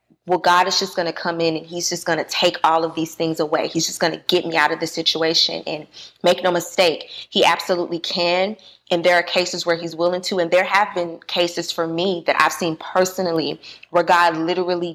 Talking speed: 235 wpm